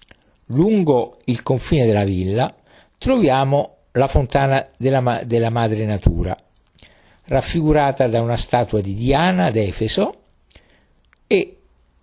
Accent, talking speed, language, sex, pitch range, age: native, 100 wpm, Italian, male, 100-145 Hz, 50-69